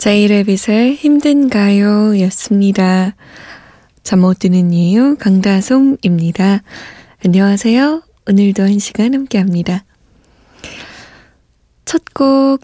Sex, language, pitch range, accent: female, Korean, 190-245 Hz, native